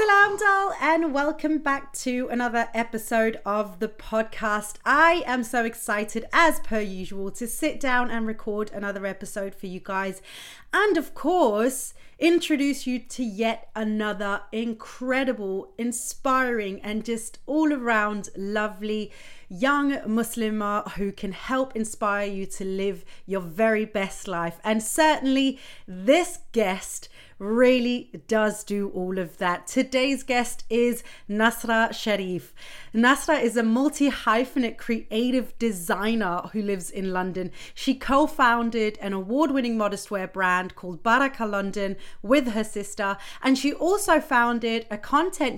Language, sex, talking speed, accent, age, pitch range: English, female, 130 wpm, British, 30-49, 205-265 Hz